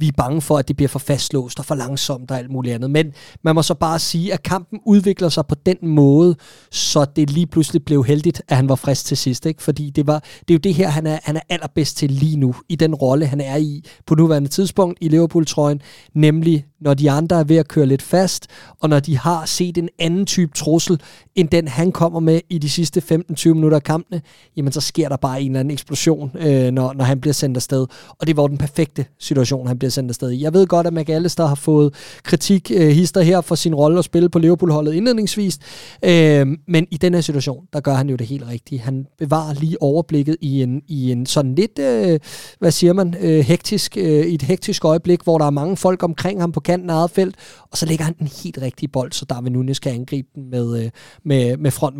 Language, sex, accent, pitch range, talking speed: Danish, male, native, 140-170 Hz, 240 wpm